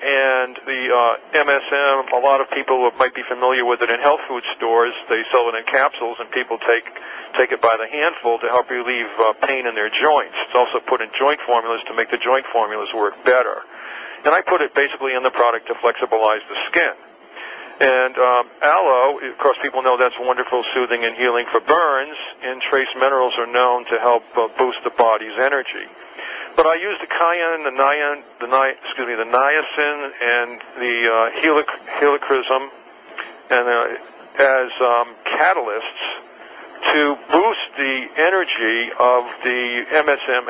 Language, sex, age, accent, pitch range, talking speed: English, male, 50-69, American, 120-135 Hz, 175 wpm